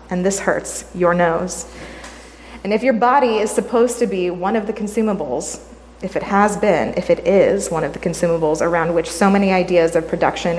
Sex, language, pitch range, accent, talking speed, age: female, English, 170-205 Hz, American, 200 wpm, 30-49